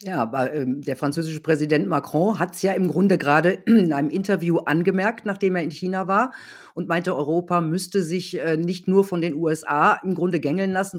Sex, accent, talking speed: female, German, 190 wpm